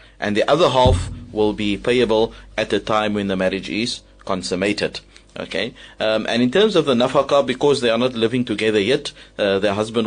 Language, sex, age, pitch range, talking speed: English, male, 30-49, 100-120 Hz, 195 wpm